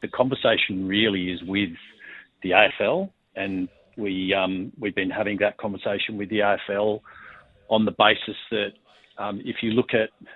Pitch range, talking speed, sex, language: 95-110 Hz, 155 wpm, male, English